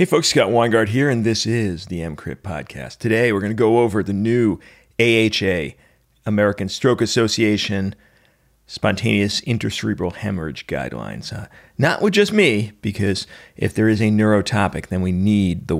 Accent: American